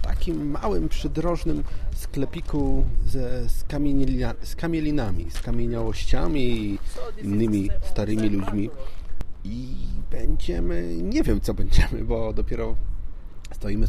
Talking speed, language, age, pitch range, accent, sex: 100 wpm, Polish, 30-49, 90-110 Hz, native, male